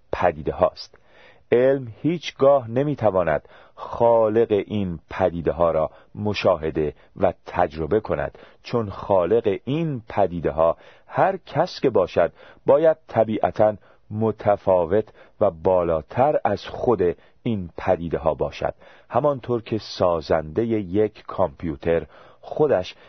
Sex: male